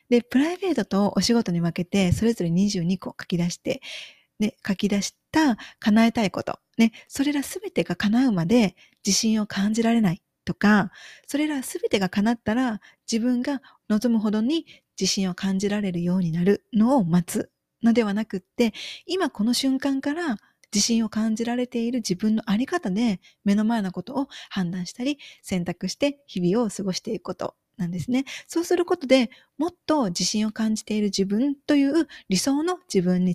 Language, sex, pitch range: Japanese, female, 190-255 Hz